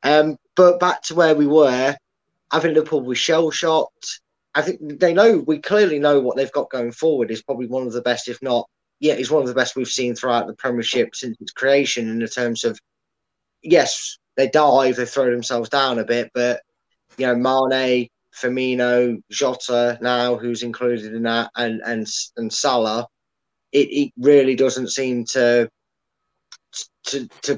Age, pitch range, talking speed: 20-39, 120-135 Hz, 180 wpm